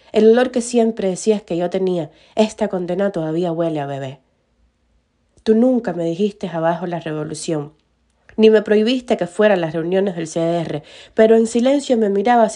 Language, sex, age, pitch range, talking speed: Spanish, female, 20-39, 170-225 Hz, 170 wpm